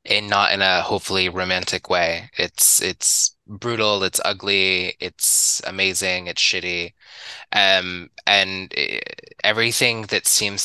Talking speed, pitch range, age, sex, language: 125 wpm, 90-105 Hz, 20-39, male, English